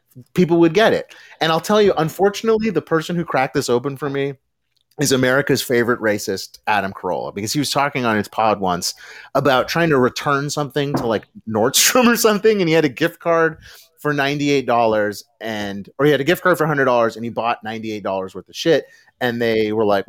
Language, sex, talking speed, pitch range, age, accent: English, male, 225 wpm, 120-170 Hz, 30-49, American